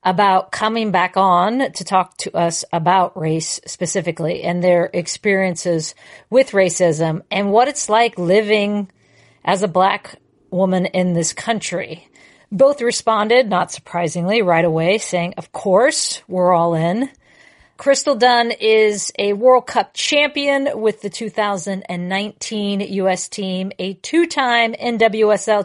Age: 40-59